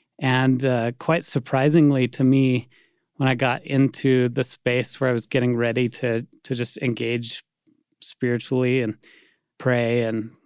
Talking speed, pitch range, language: 145 wpm, 120-145 Hz, English